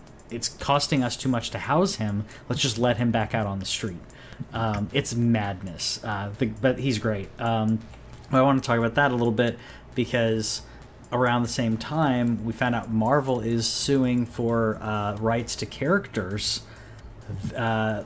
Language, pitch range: English, 110-125 Hz